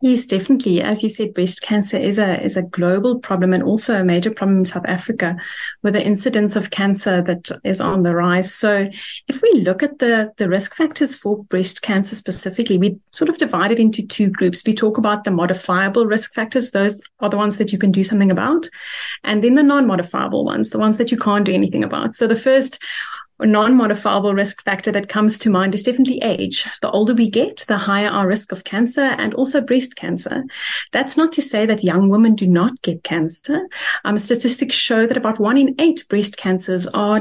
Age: 30-49